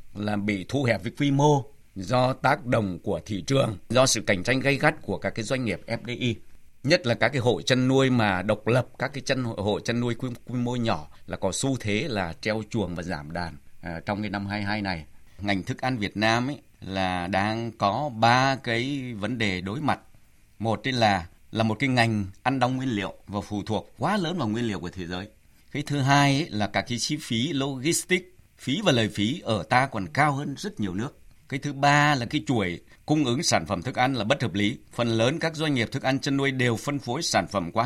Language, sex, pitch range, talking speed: Vietnamese, male, 105-135 Hz, 240 wpm